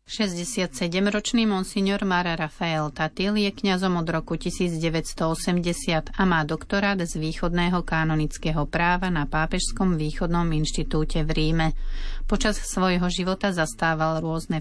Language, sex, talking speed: Slovak, female, 115 wpm